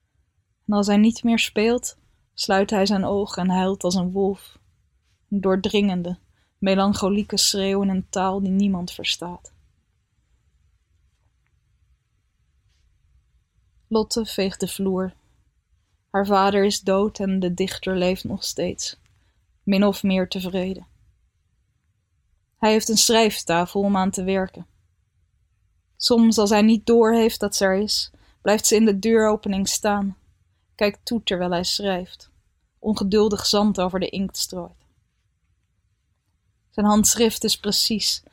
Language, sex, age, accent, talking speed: Dutch, female, 20-39, Dutch, 125 wpm